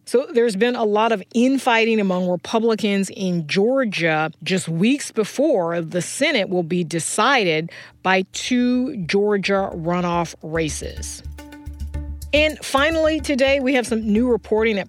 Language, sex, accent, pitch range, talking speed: English, female, American, 170-210 Hz, 135 wpm